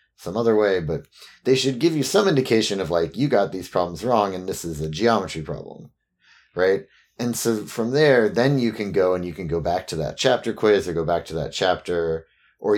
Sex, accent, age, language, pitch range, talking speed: male, American, 30-49, English, 80-105 Hz, 225 wpm